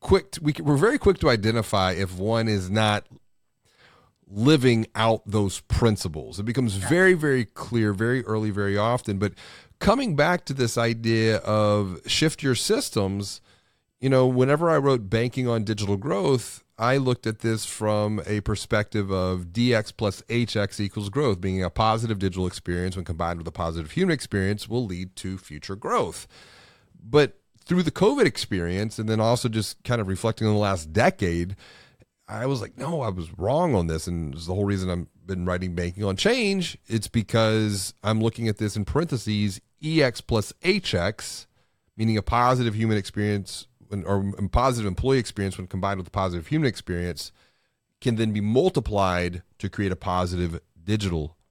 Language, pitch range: English, 95-125 Hz